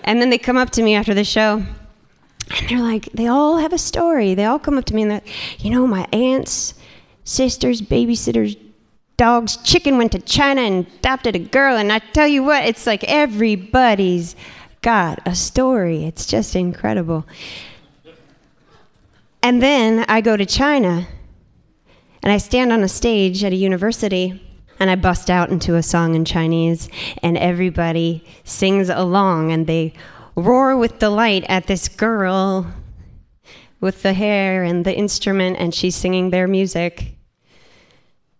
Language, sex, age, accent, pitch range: Japanese, female, 20-39, American, 180-225 Hz